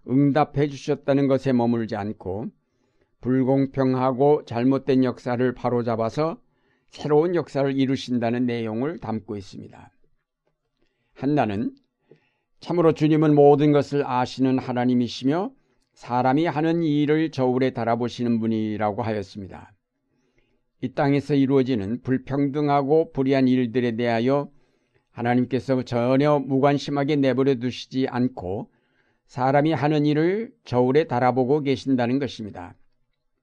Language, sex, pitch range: Korean, male, 120-140 Hz